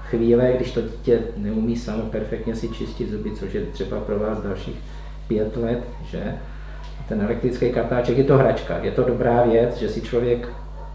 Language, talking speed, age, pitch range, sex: Czech, 175 wpm, 50-69, 105-120 Hz, male